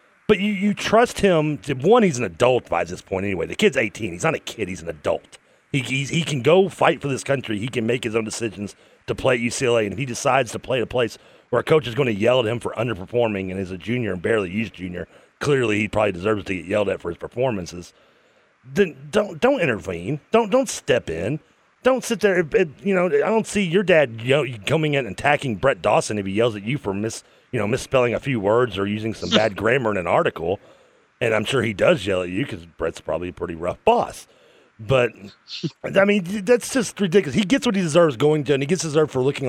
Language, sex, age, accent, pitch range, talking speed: English, male, 30-49, American, 100-155 Hz, 245 wpm